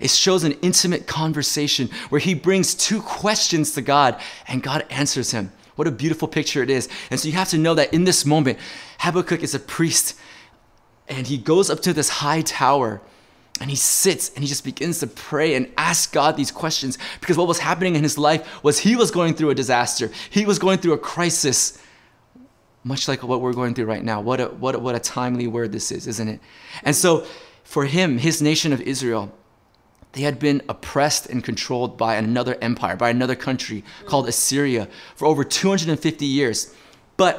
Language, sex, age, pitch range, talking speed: English, male, 20-39, 130-170 Hz, 195 wpm